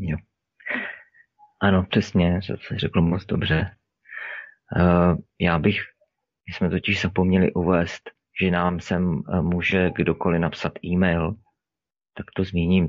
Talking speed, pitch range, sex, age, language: 110 wpm, 85-100 Hz, male, 30-49, Czech